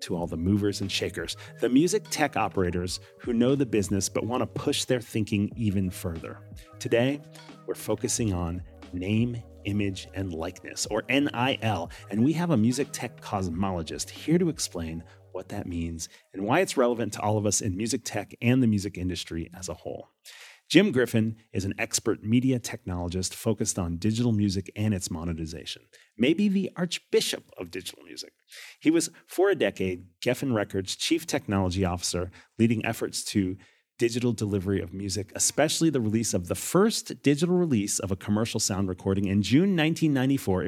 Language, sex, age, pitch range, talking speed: English, male, 40-59, 95-125 Hz, 170 wpm